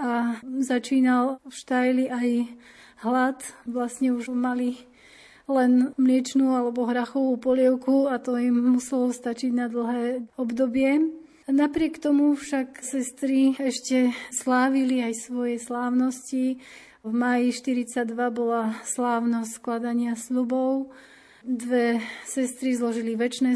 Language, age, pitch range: Slovak, 30-49, 240-260 Hz